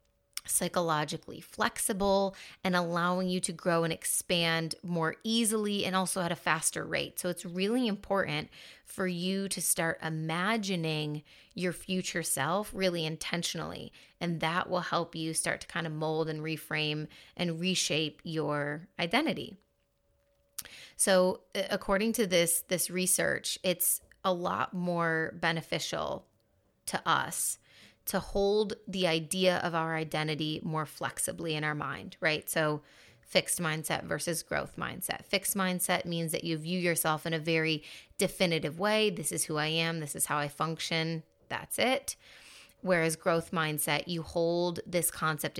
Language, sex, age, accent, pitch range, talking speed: English, female, 30-49, American, 155-185 Hz, 145 wpm